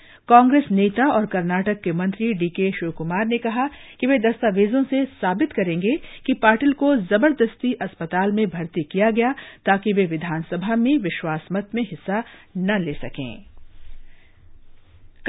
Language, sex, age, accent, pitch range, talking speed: Hindi, female, 50-69, native, 170-240 Hz, 140 wpm